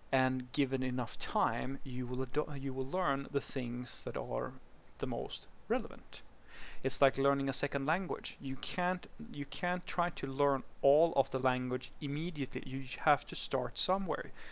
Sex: male